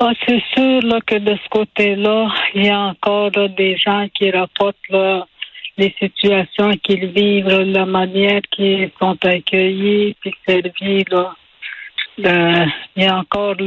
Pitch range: 180-195 Hz